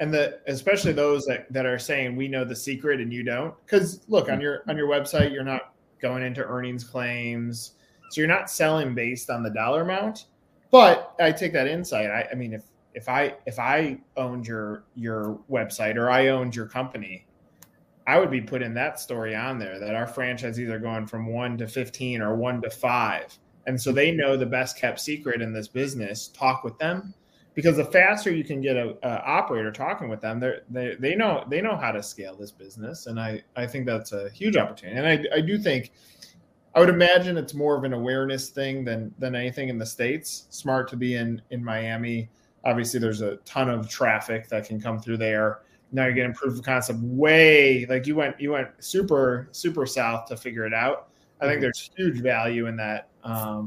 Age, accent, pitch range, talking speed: 20-39, American, 115-140 Hz, 210 wpm